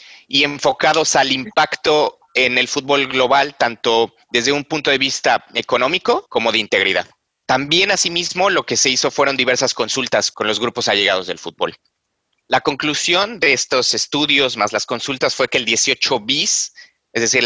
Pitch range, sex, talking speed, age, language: 120-155 Hz, male, 160 wpm, 30-49, English